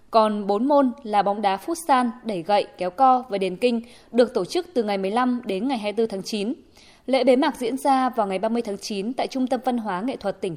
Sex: female